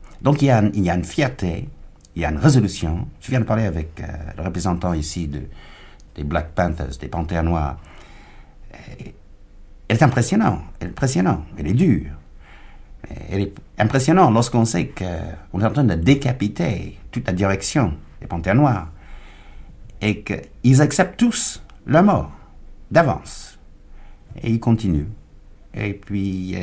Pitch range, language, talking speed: 75-110 Hz, French, 170 wpm